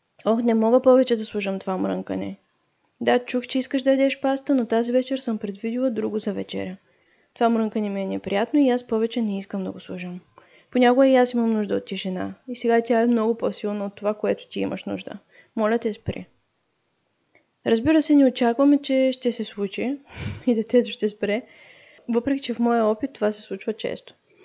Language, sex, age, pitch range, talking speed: Bulgarian, female, 20-39, 205-250 Hz, 195 wpm